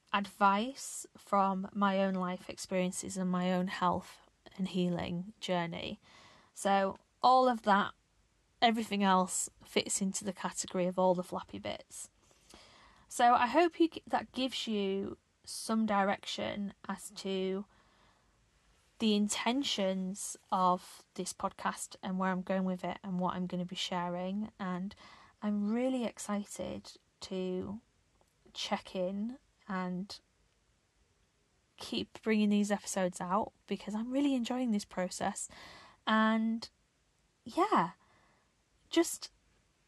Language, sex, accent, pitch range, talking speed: English, female, British, 185-220 Hz, 120 wpm